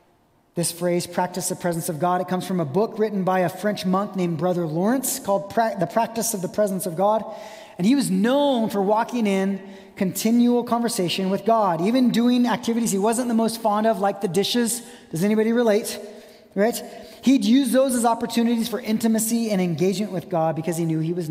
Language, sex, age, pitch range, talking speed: English, male, 30-49, 195-250 Hz, 200 wpm